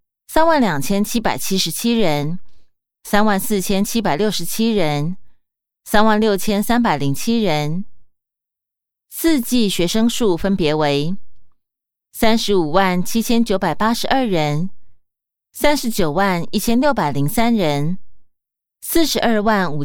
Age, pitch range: 20-39, 170-230 Hz